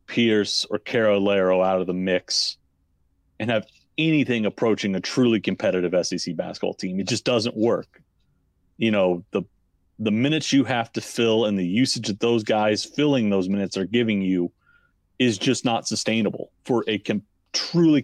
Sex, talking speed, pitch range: male, 165 wpm, 90-115 Hz